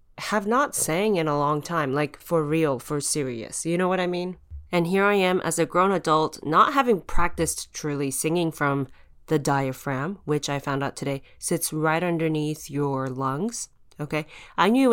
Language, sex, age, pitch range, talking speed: English, female, 20-39, 150-210 Hz, 190 wpm